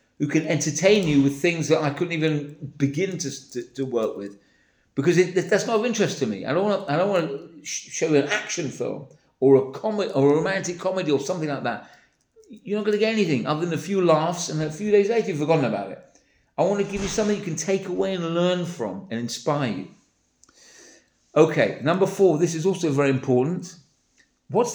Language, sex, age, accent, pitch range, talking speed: English, male, 50-69, British, 145-200 Hz, 215 wpm